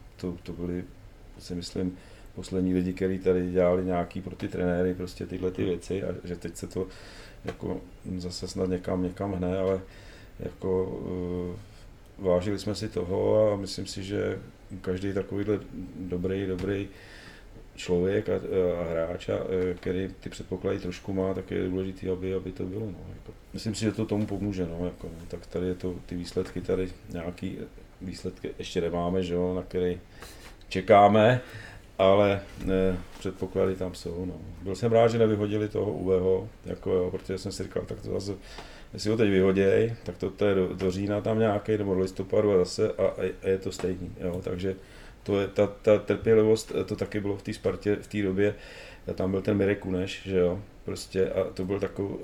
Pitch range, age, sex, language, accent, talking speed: 90-100 Hz, 40-59, male, Czech, native, 185 wpm